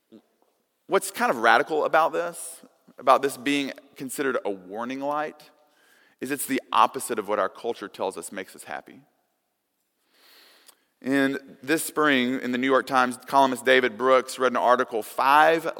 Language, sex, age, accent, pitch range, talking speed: English, male, 40-59, American, 120-165 Hz, 155 wpm